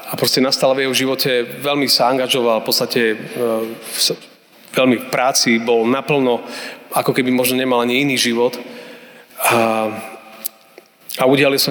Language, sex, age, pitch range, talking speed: Slovak, male, 30-49, 115-130 Hz, 140 wpm